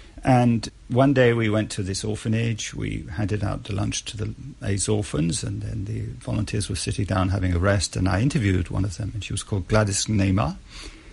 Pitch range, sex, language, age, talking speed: 95-115 Hz, male, English, 50-69, 210 wpm